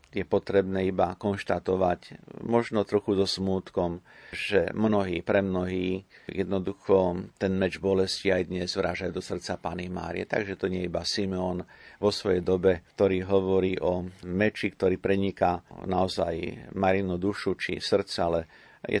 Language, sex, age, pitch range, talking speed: Slovak, male, 50-69, 90-105 Hz, 140 wpm